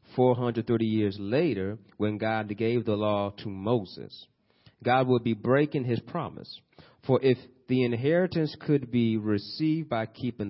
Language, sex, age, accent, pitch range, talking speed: English, male, 30-49, American, 115-140 Hz, 145 wpm